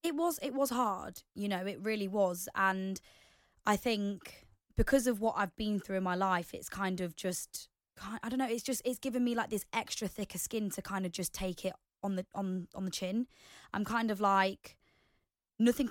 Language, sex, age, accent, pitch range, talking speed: English, female, 20-39, British, 185-215 Hz, 210 wpm